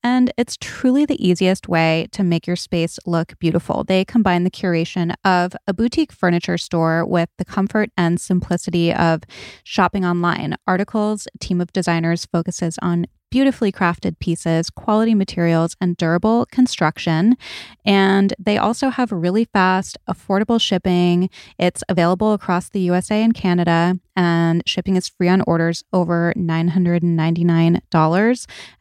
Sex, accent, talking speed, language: female, American, 135 wpm, English